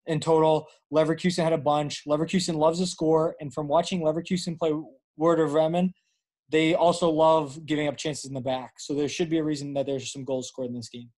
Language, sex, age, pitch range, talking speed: English, male, 20-39, 145-170 Hz, 215 wpm